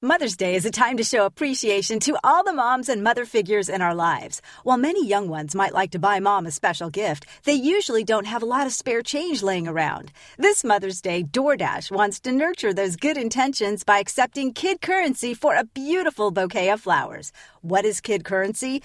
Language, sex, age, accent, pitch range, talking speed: English, female, 40-59, American, 205-300 Hz, 205 wpm